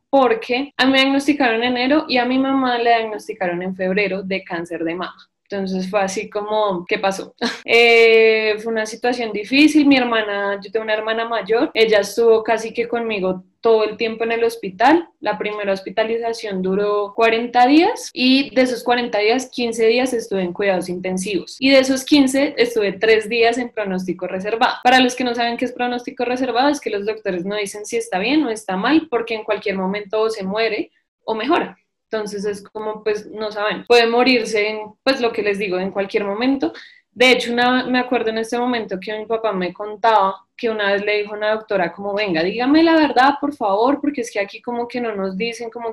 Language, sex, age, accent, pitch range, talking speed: Spanish, female, 10-29, Colombian, 205-250 Hz, 210 wpm